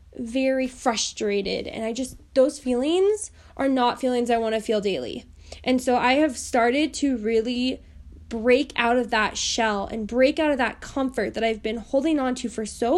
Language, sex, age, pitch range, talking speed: English, female, 10-29, 230-280 Hz, 190 wpm